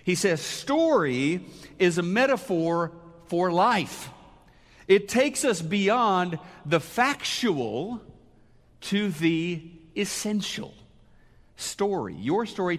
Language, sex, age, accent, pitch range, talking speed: English, male, 50-69, American, 170-210 Hz, 95 wpm